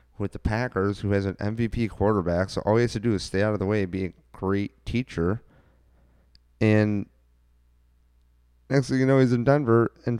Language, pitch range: English, 85-115 Hz